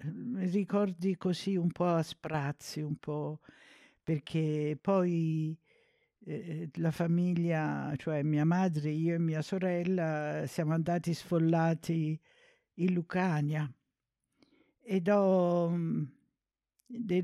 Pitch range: 160-195 Hz